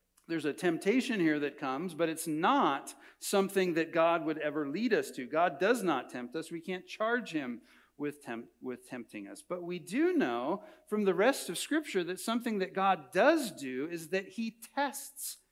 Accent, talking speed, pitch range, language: American, 195 wpm, 155-205 Hz, English